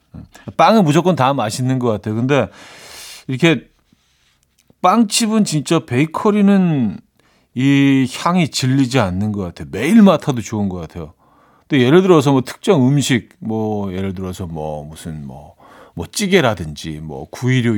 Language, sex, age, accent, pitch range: Korean, male, 40-59, native, 105-145 Hz